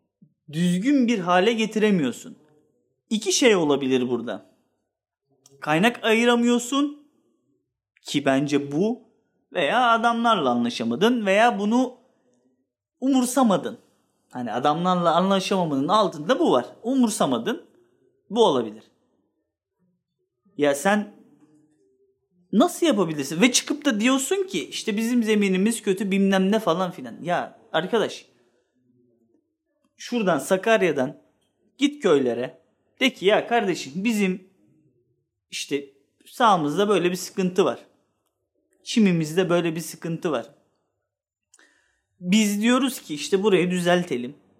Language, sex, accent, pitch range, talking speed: Turkish, male, native, 160-235 Hz, 100 wpm